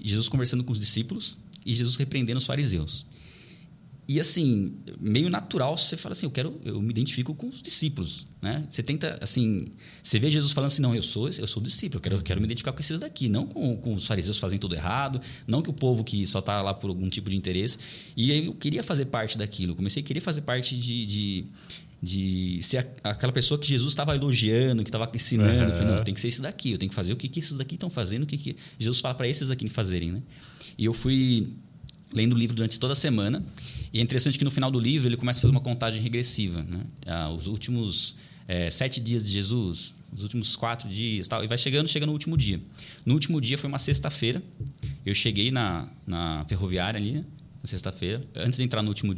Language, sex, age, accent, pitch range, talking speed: Portuguese, male, 20-39, Brazilian, 105-140 Hz, 230 wpm